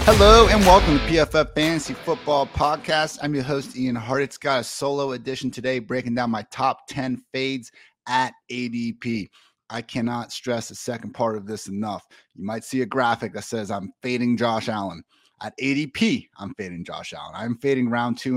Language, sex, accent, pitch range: English, male, American, 115-145 Hz